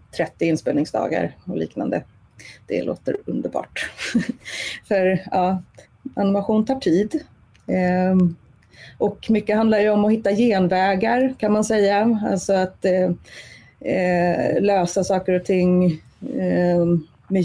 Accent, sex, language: native, female, Swedish